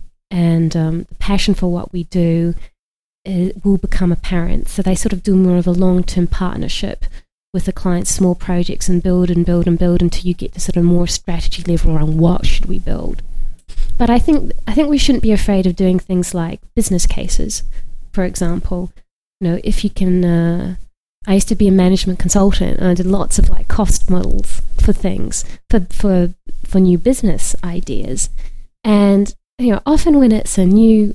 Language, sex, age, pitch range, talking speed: English, female, 20-39, 180-205 Hz, 195 wpm